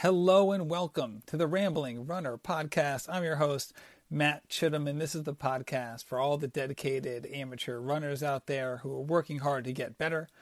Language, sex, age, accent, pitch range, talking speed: English, male, 40-59, American, 135-160 Hz, 190 wpm